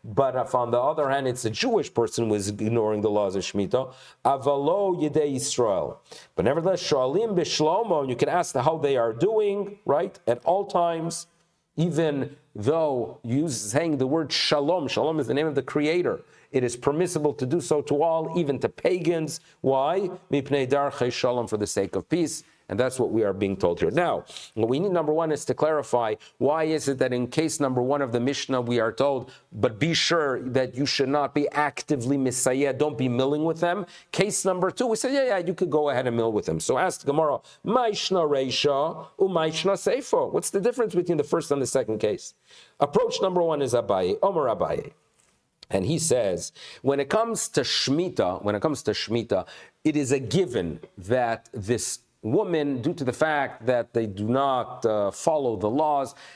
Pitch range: 125-165 Hz